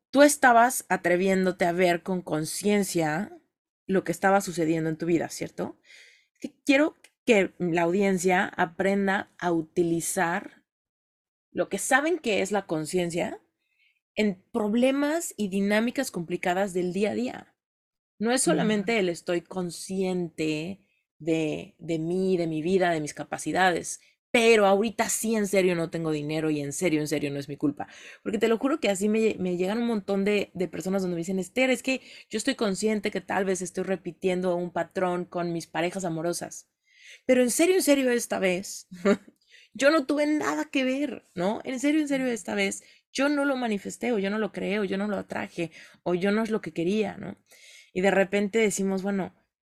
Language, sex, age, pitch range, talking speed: Spanish, female, 30-49, 175-230 Hz, 180 wpm